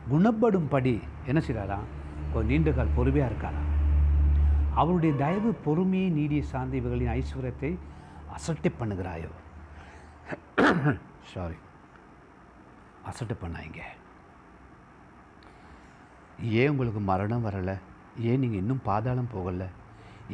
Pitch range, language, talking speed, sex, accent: 90-140 Hz, Tamil, 85 wpm, male, native